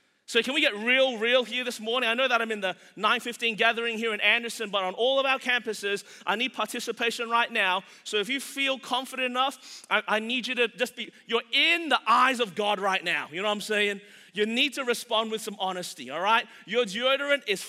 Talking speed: 235 wpm